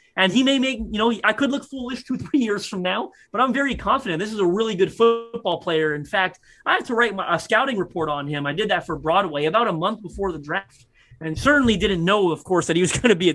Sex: male